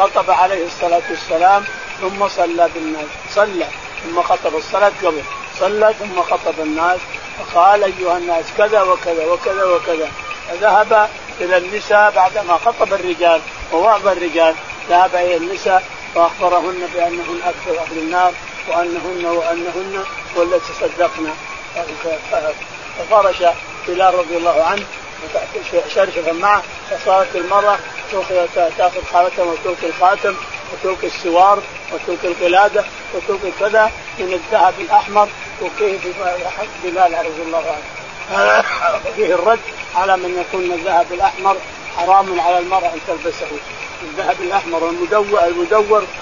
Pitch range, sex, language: 170-205 Hz, male, Arabic